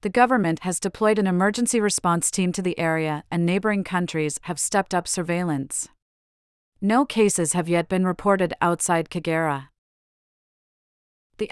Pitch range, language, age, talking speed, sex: 165-200 Hz, English, 40-59, 140 wpm, female